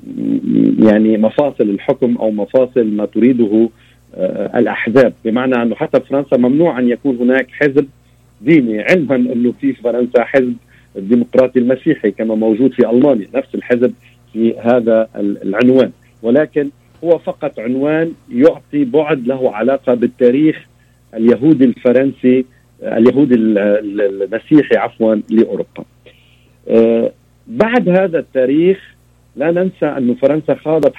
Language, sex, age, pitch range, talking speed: Arabic, male, 50-69, 115-140 Hz, 110 wpm